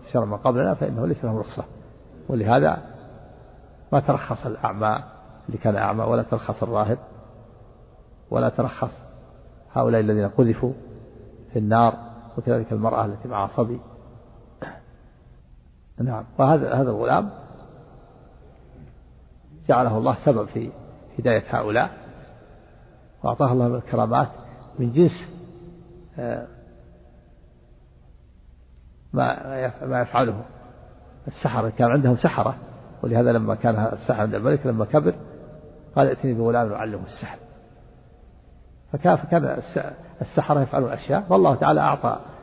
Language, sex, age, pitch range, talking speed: Arabic, male, 50-69, 105-125 Hz, 100 wpm